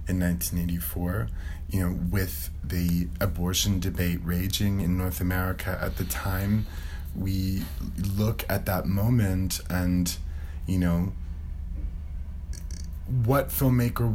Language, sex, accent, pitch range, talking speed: English, male, American, 80-95 Hz, 105 wpm